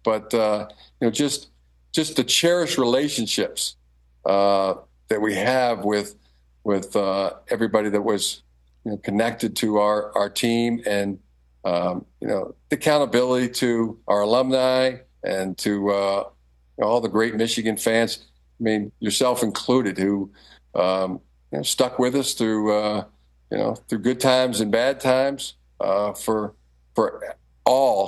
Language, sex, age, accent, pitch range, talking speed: English, male, 50-69, American, 95-125 Hz, 150 wpm